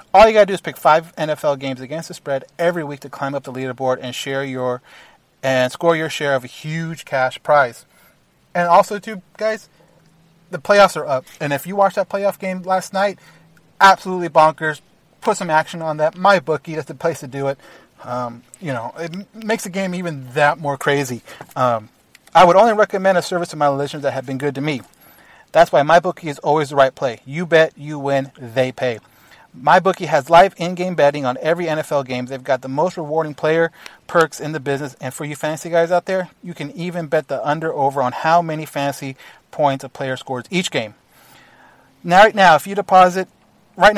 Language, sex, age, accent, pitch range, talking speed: English, male, 30-49, American, 140-175 Hz, 210 wpm